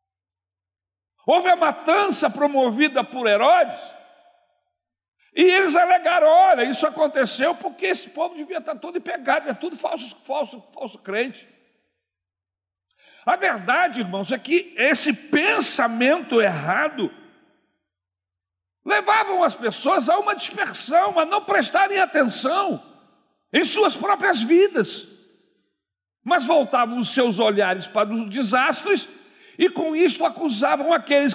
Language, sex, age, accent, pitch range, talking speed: Portuguese, male, 60-79, Brazilian, 220-345 Hz, 115 wpm